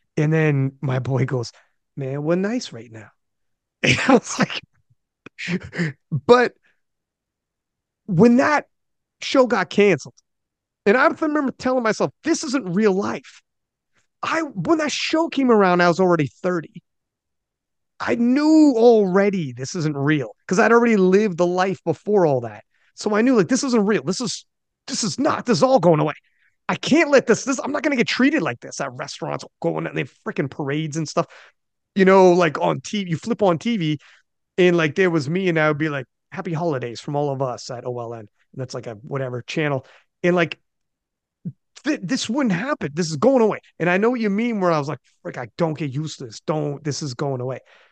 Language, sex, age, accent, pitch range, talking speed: English, male, 30-49, American, 150-240 Hz, 200 wpm